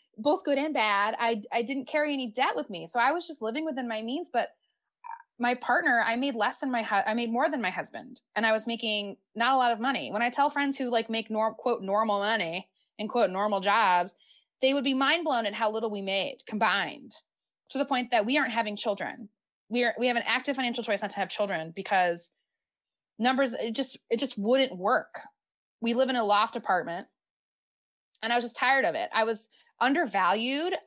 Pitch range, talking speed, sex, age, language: 205-265 Hz, 220 wpm, female, 20-39, English